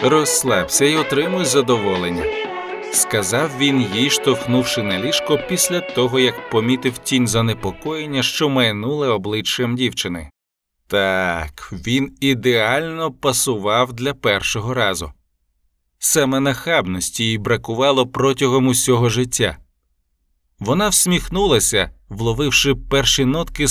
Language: Ukrainian